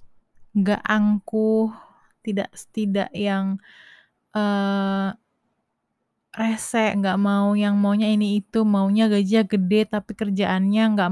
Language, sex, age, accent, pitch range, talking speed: Indonesian, female, 20-39, native, 190-215 Hz, 105 wpm